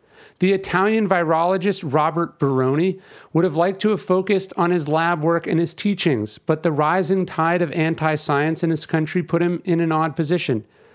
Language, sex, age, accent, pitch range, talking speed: English, male, 40-59, American, 145-175 Hz, 180 wpm